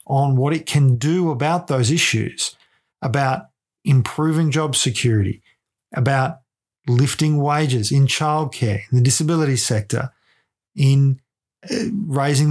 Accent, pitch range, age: Australian, 125-150 Hz, 40-59